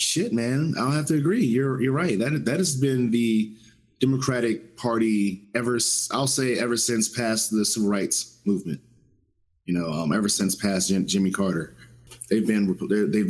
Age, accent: 30-49, American